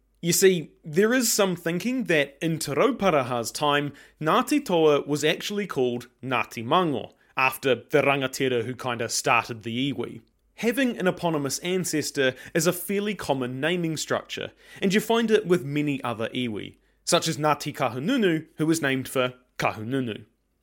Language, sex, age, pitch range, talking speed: English, male, 30-49, 125-175 Hz, 155 wpm